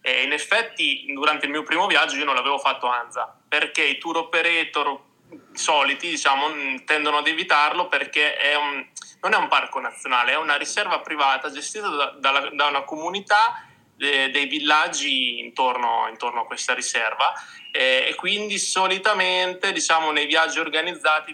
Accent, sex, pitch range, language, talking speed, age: native, male, 135-180 Hz, Italian, 155 wpm, 20-39